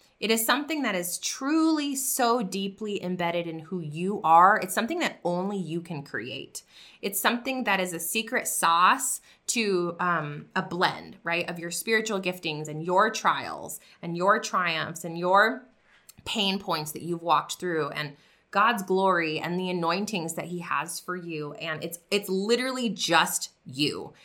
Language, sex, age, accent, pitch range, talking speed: English, female, 20-39, American, 170-215 Hz, 165 wpm